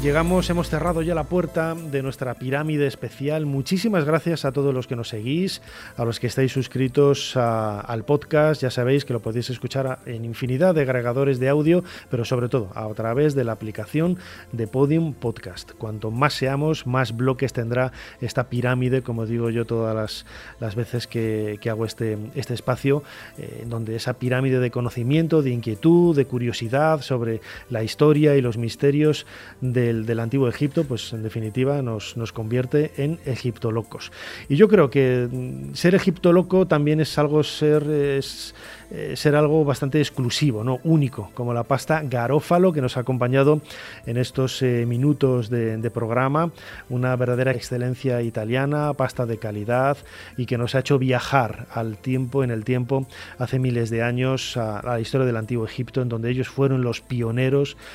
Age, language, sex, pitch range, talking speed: 30-49, Spanish, male, 115-140 Hz, 170 wpm